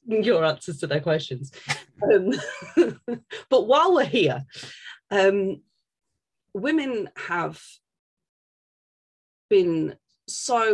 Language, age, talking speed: English, 30-49, 85 wpm